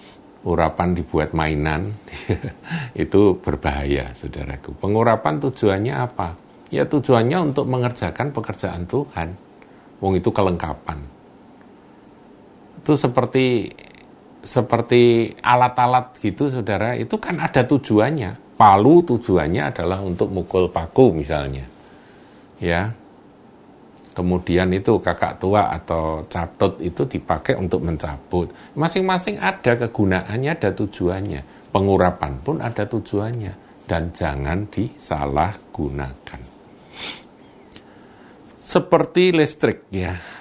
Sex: male